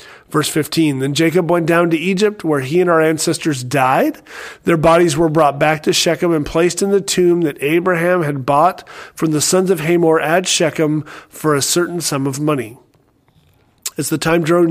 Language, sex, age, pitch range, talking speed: English, male, 40-59, 145-175 Hz, 190 wpm